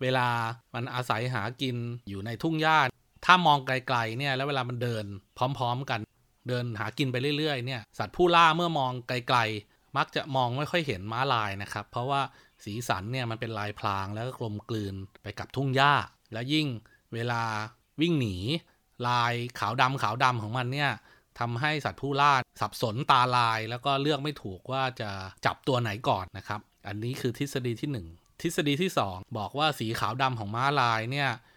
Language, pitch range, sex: Thai, 115-140 Hz, male